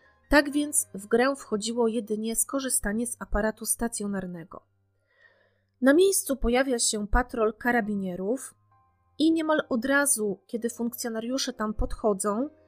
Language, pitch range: Polish, 210-265 Hz